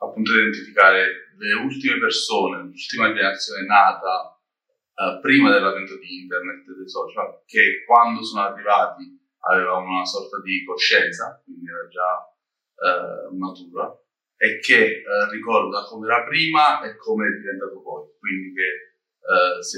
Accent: native